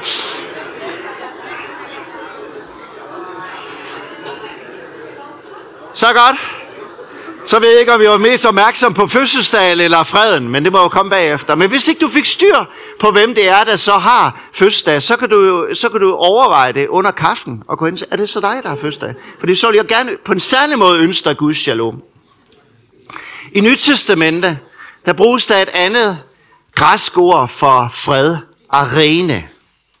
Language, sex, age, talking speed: Danish, male, 60-79, 155 wpm